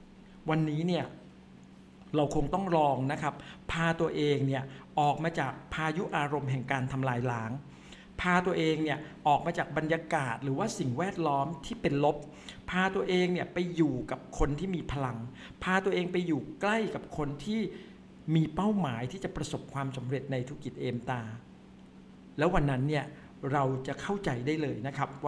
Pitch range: 130-175 Hz